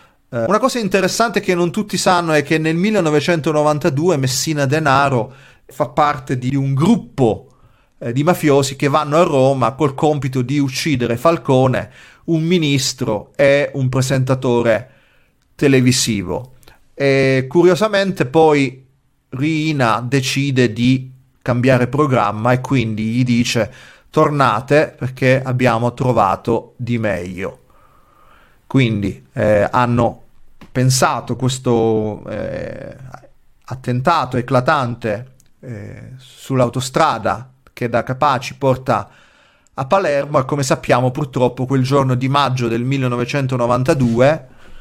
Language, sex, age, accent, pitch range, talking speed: Italian, male, 30-49, native, 125-150 Hz, 105 wpm